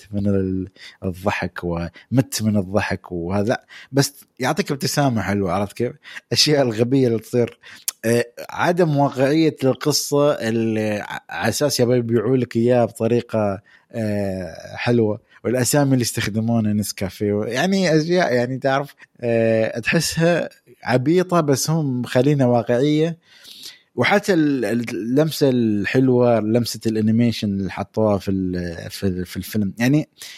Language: Arabic